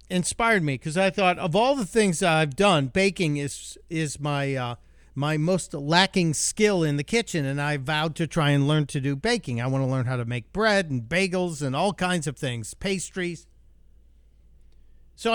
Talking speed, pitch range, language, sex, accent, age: 195 wpm, 130-185 Hz, English, male, American, 50-69